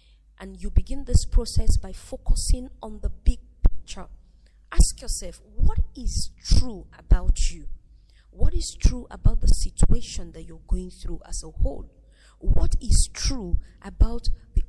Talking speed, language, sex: 145 wpm, English, female